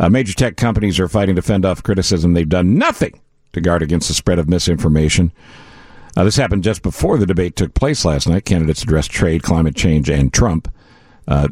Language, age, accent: English, 50-69, American